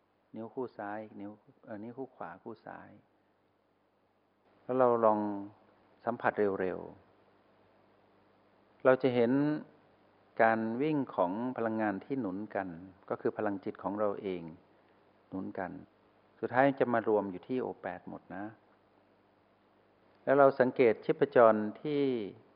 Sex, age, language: male, 60-79, Thai